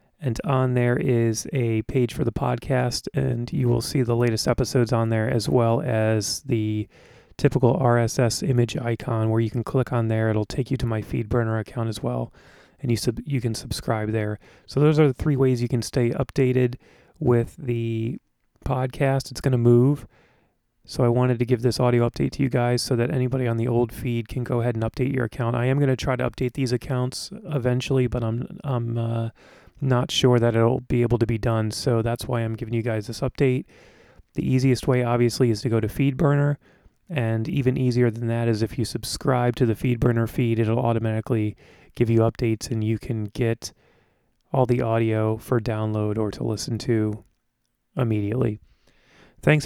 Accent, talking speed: American, 200 wpm